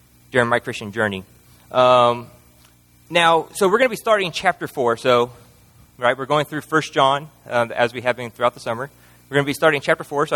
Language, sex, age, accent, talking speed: English, male, 30-49, American, 215 wpm